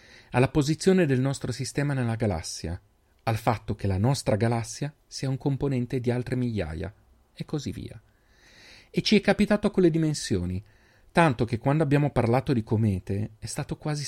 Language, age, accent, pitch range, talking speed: Italian, 40-59, native, 105-130 Hz, 165 wpm